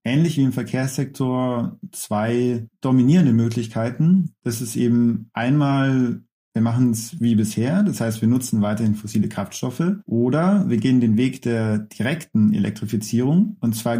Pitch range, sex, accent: 115-155 Hz, male, German